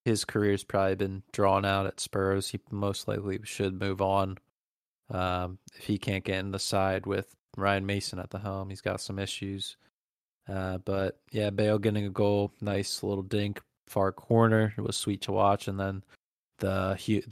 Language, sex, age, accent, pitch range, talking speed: English, male, 20-39, American, 95-105 Hz, 180 wpm